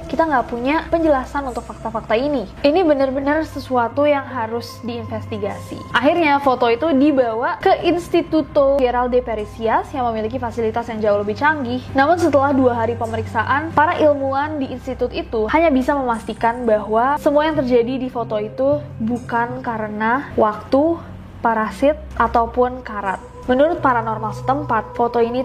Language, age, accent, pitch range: Indonesian, 20-39, native, 225-270 Hz